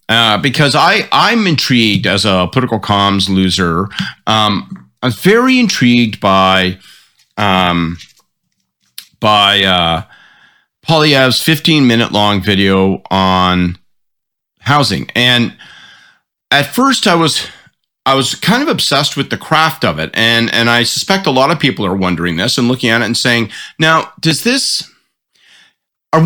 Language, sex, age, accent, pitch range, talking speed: English, male, 40-59, American, 100-140 Hz, 140 wpm